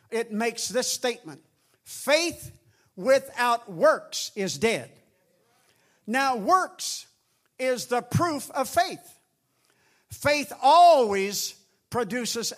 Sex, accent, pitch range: male, American, 205-260 Hz